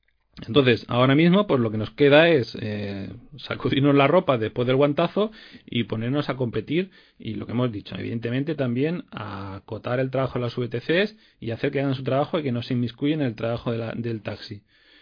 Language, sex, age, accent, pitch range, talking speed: Spanish, male, 40-59, Spanish, 115-150 Hz, 210 wpm